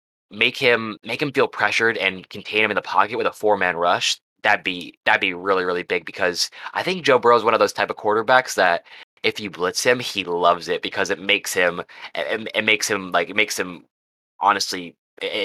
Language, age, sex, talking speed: English, 20-39, male, 225 wpm